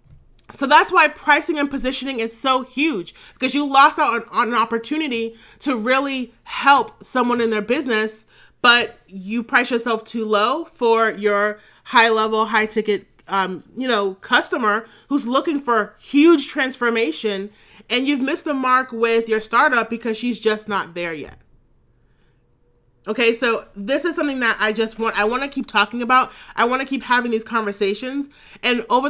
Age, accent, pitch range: 30-49, American, 215-260 Hz